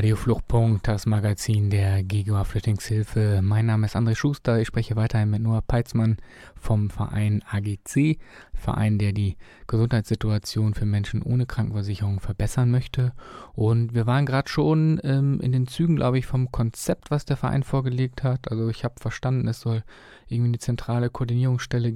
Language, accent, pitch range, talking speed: German, German, 110-130 Hz, 160 wpm